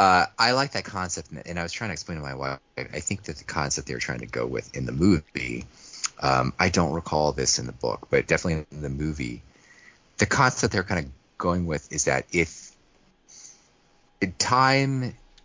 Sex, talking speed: male, 200 wpm